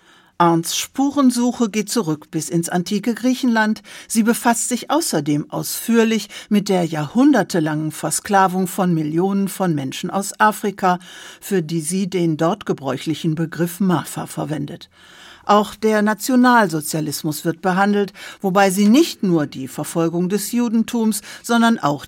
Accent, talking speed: German, 130 wpm